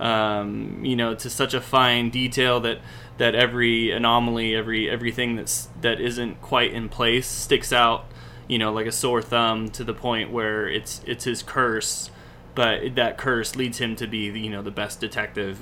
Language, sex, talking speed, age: English, male, 190 wpm, 20-39